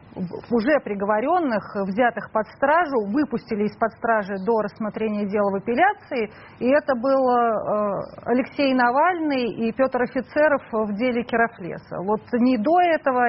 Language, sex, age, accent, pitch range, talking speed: Russian, female, 30-49, native, 215-260 Hz, 125 wpm